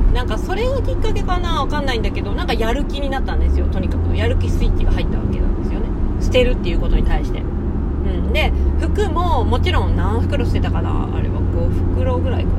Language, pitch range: Japanese, 85-95 Hz